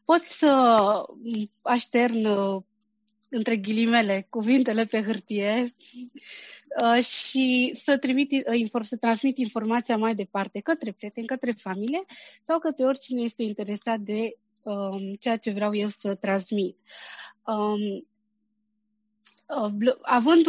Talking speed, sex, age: 95 wpm, female, 20-39